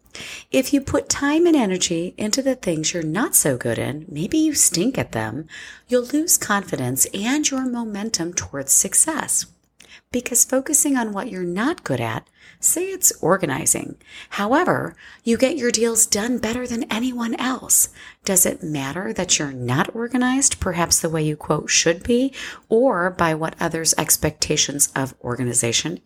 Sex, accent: female, American